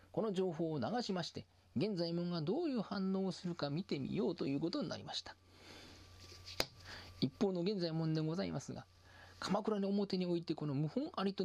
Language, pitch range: Japanese, 120-200 Hz